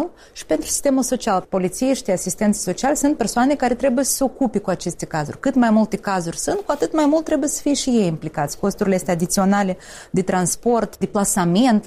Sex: female